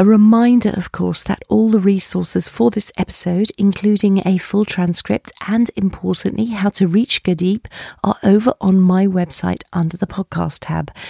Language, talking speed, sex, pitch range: English, 160 wpm, female, 160-210 Hz